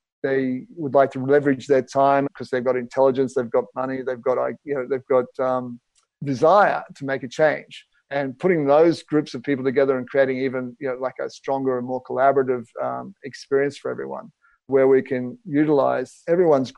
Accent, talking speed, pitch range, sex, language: Australian, 190 wpm, 130-140 Hz, male, English